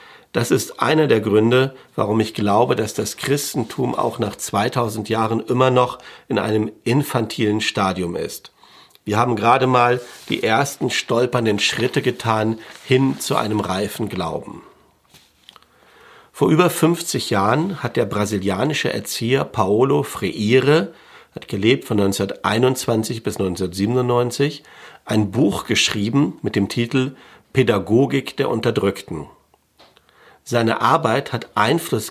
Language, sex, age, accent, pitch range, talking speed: German, male, 50-69, German, 105-130 Hz, 120 wpm